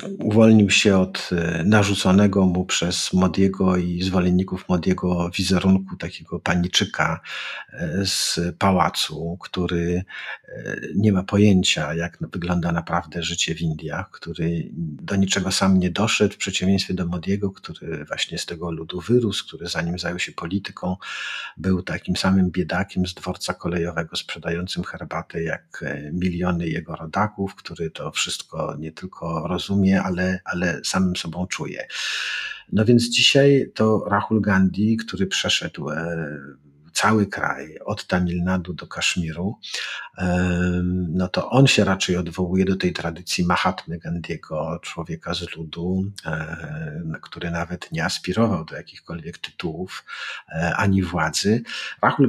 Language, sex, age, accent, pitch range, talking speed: Polish, male, 50-69, native, 85-100 Hz, 125 wpm